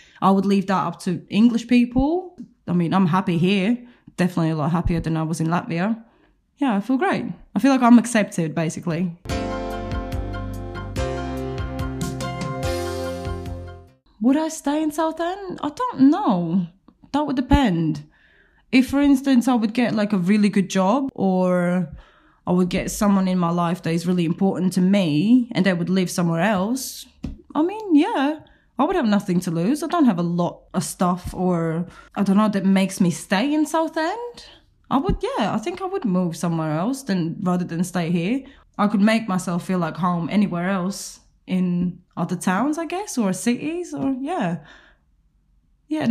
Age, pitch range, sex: 20-39, 175-260 Hz, female